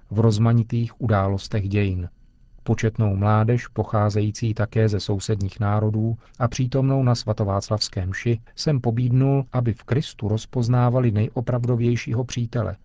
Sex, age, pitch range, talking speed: male, 40-59, 105-120 Hz, 110 wpm